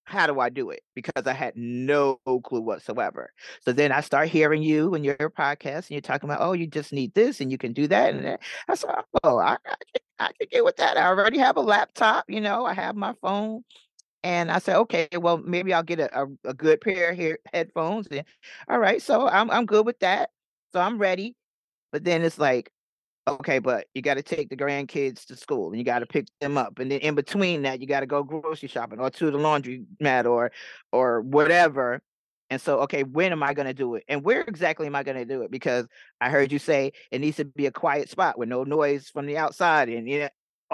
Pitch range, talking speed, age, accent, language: 135-170 Hz, 245 wpm, 40-59, American, English